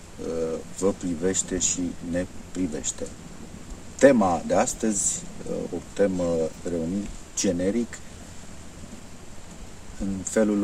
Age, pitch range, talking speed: 50-69, 85-100 Hz, 80 wpm